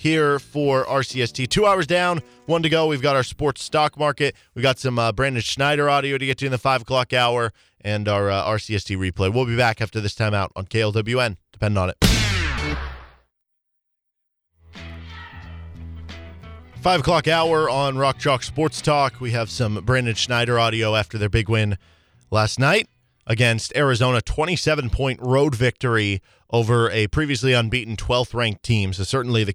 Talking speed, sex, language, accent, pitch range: 160 wpm, male, English, American, 100-130 Hz